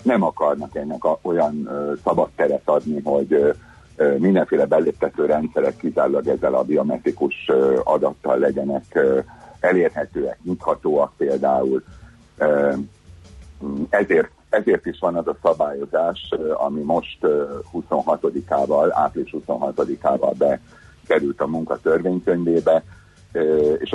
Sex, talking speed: male, 90 wpm